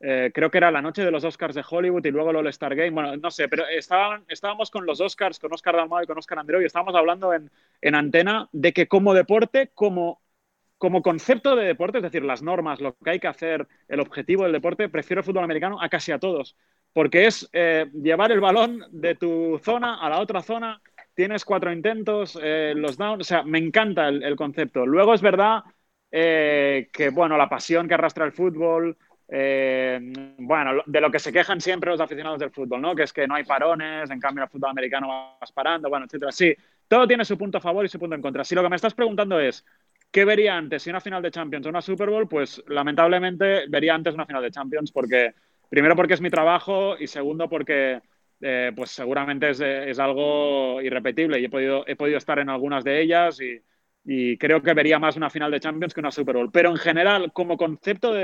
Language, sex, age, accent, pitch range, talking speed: Spanish, male, 30-49, Spanish, 145-180 Hz, 225 wpm